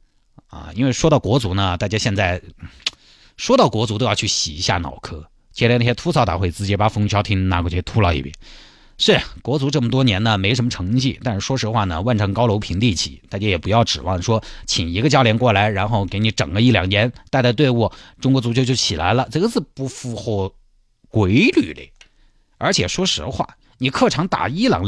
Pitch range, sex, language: 95-135 Hz, male, Chinese